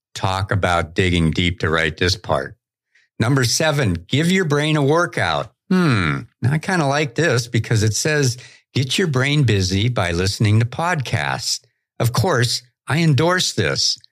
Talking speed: 155 wpm